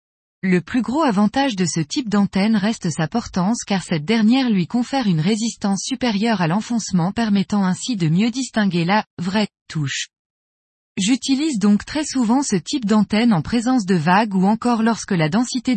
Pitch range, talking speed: 185-245 Hz, 170 wpm